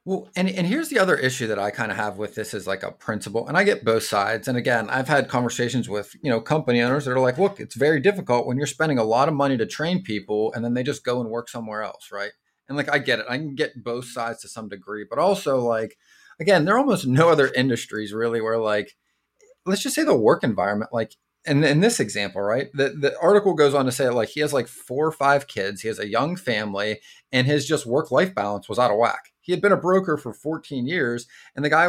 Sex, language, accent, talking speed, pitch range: male, English, American, 265 wpm, 115-170 Hz